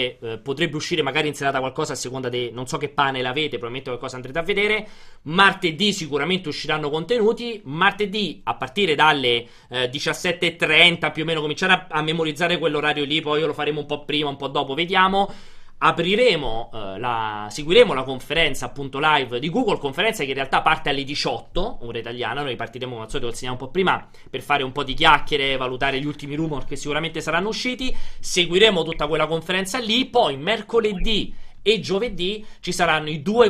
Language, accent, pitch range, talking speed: Italian, native, 130-180 Hz, 185 wpm